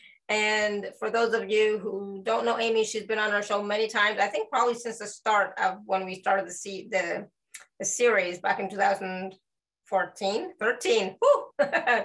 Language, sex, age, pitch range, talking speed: English, female, 30-49, 195-240 Hz, 155 wpm